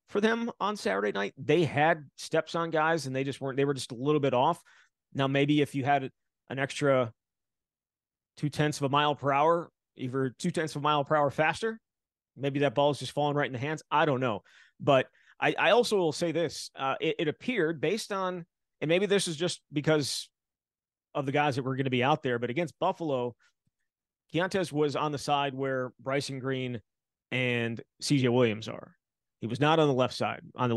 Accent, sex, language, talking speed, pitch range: American, male, English, 215 wpm, 125-155 Hz